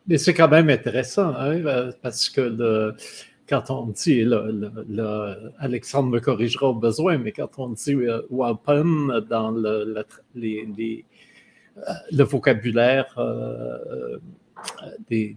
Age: 50-69